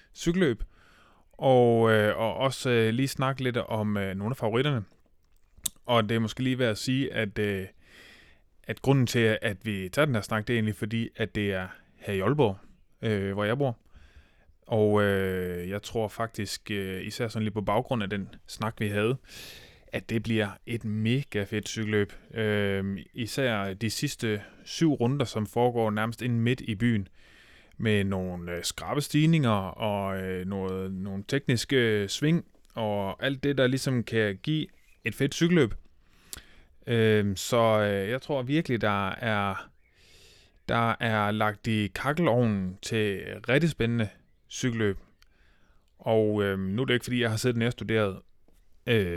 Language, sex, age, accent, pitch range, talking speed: Danish, male, 20-39, native, 100-120 Hz, 165 wpm